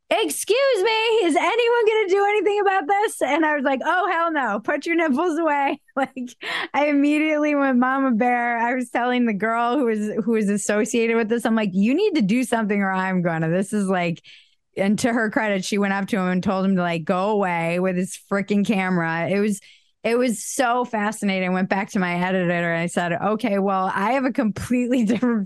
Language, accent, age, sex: English, American, 20-39, female